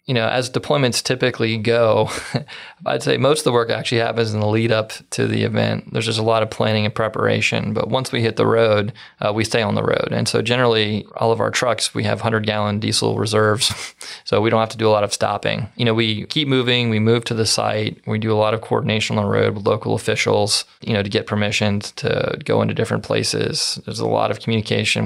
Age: 20-39